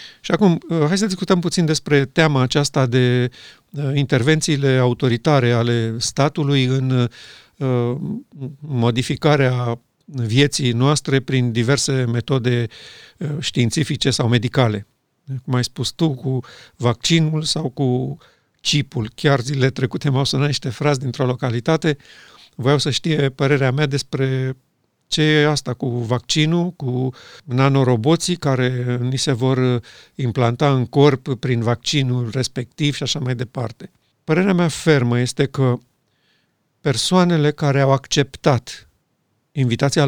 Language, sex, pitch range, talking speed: Romanian, male, 125-150 Hz, 120 wpm